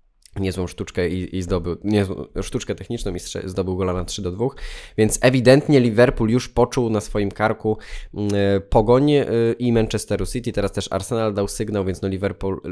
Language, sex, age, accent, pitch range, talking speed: Polish, male, 20-39, native, 95-115 Hz, 160 wpm